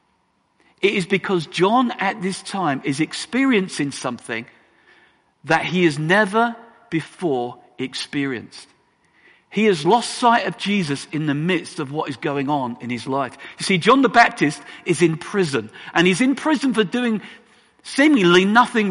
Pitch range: 165-230 Hz